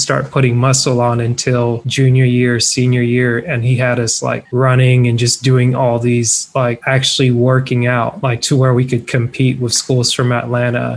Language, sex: English, male